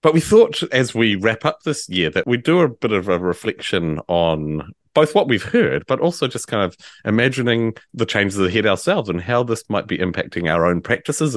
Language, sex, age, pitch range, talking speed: English, male, 30-49, 85-130 Hz, 215 wpm